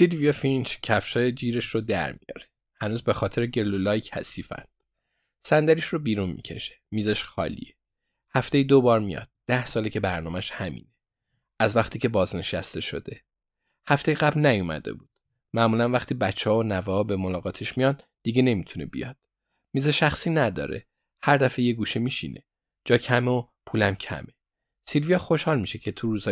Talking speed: 150 wpm